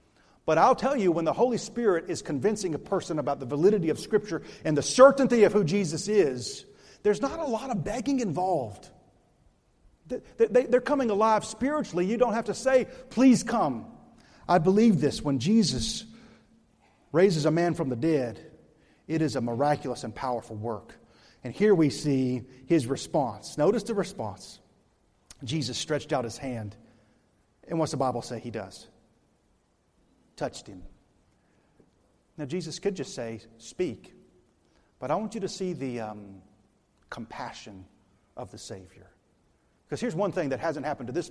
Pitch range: 120-200 Hz